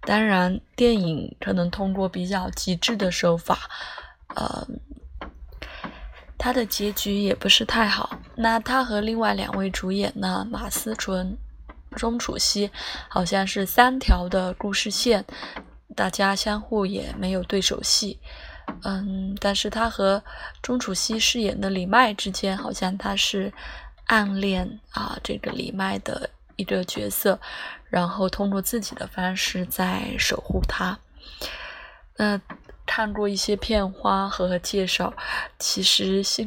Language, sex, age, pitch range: Chinese, female, 20-39, 185-215 Hz